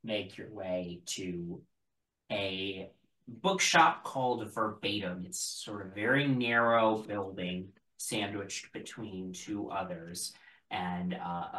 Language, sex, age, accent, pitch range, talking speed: English, male, 30-49, American, 95-115 Hz, 110 wpm